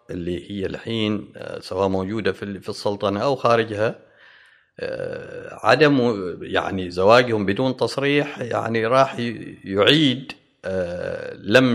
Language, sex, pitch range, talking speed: Arabic, male, 100-140 Hz, 95 wpm